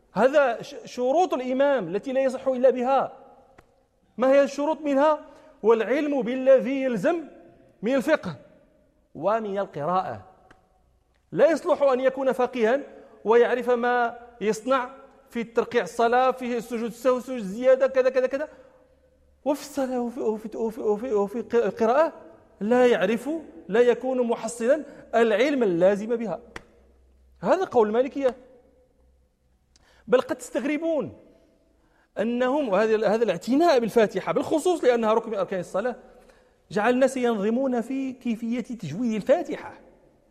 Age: 40-59